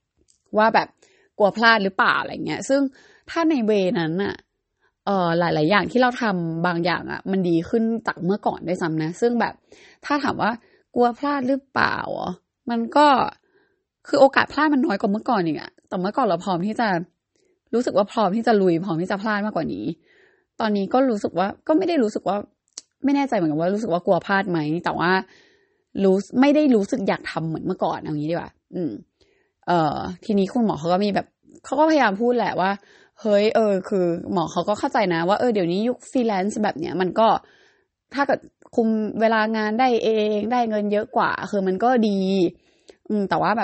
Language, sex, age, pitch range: Thai, female, 20-39, 180-255 Hz